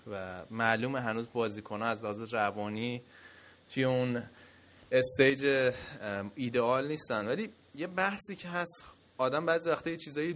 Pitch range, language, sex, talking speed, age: 110-130 Hz, Persian, male, 120 wpm, 20-39